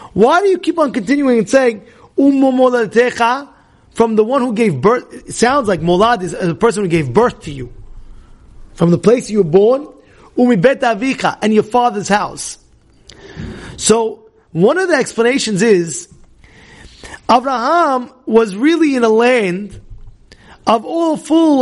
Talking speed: 150 wpm